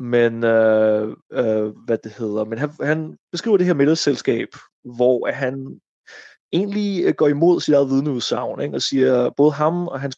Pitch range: 120-150 Hz